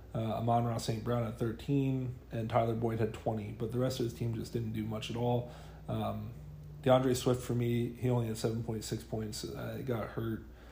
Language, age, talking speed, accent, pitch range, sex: English, 30-49, 215 wpm, American, 110-120 Hz, male